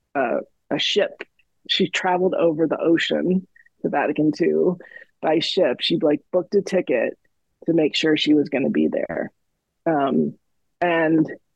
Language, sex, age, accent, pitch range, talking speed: English, female, 30-49, American, 150-185 Hz, 155 wpm